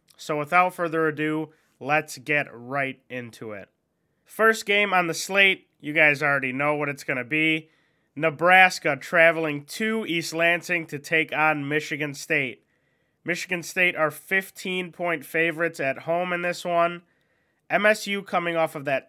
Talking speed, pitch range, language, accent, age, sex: 150 wpm, 150-175 Hz, English, American, 30-49, male